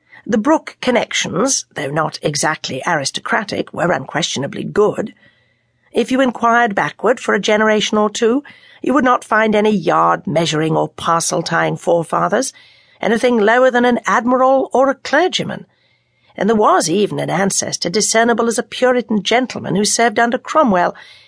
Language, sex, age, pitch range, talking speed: English, female, 50-69, 170-240 Hz, 145 wpm